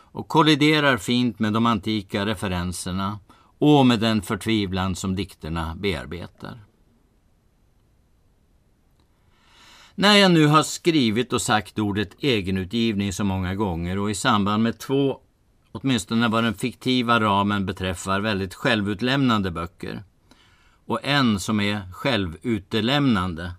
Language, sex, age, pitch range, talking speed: Swedish, male, 50-69, 95-120 Hz, 115 wpm